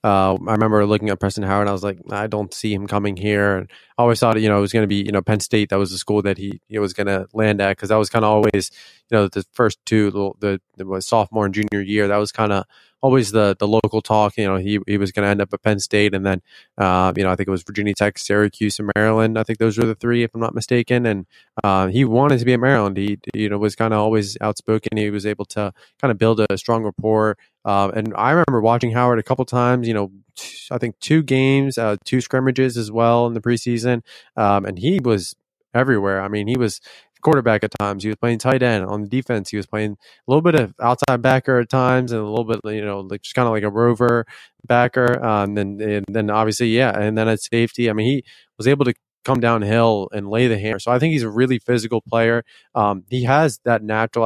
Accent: American